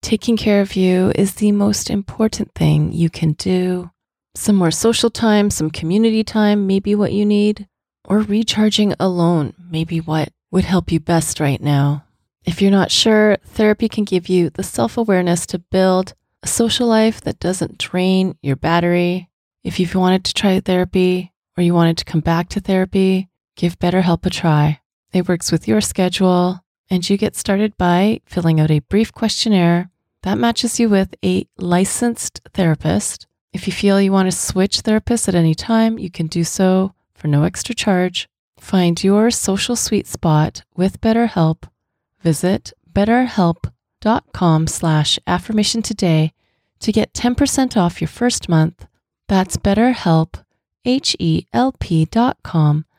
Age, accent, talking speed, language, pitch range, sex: 30-49, American, 150 wpm, English, 165-210 Hz, female